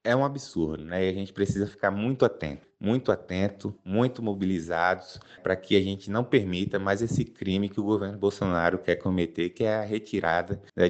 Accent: Brazilian